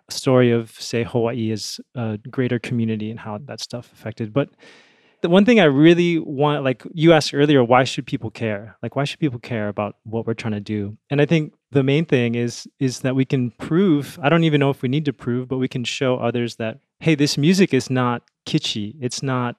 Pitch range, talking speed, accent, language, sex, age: 115-145 Hz, 225 wpm, American, English, male, 30-49